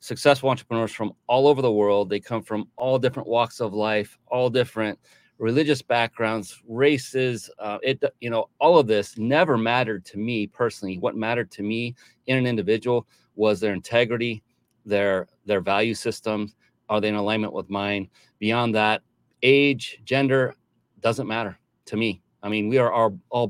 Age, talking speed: 30-49, 165 wpm